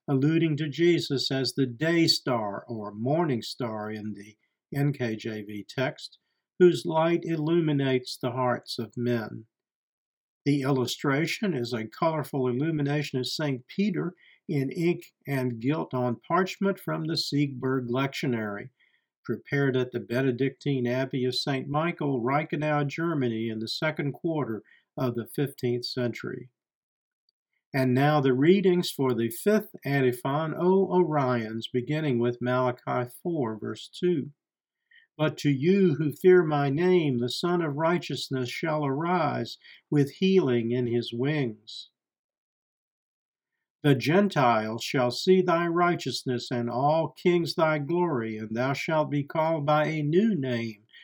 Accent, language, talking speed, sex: American, English, 130 wpm, male